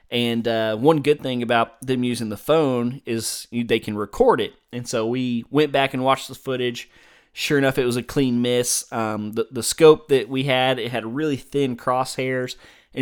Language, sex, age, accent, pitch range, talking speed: English, male, 20-39, American, 115-140 Hz, 205 wpm